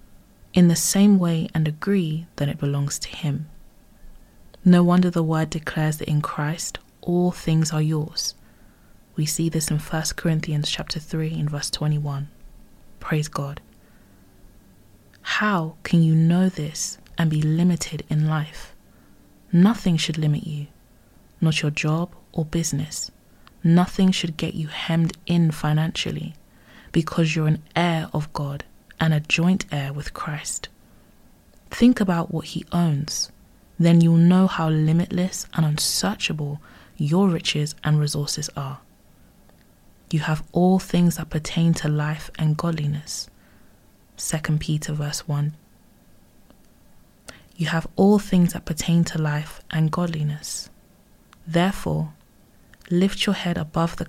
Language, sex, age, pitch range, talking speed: English, female, 20-39, 150-170 Hz, 135 wpm